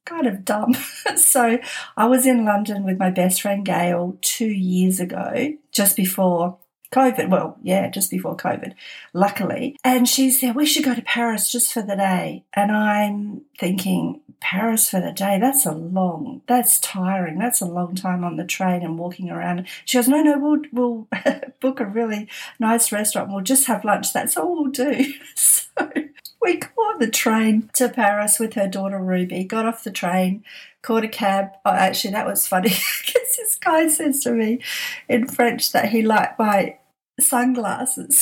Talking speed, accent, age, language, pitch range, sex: 180 wpm, Australian, 50-69, English, 195-260 Hz, female